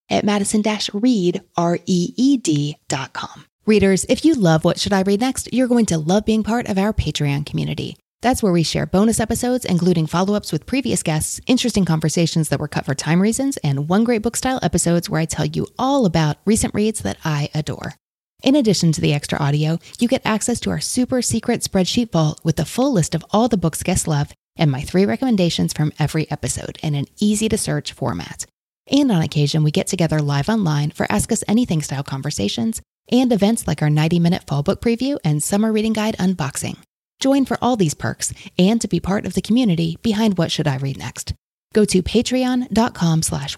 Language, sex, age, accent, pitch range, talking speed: English, female, 30-49, American, 155-220 Hz, 200 wpm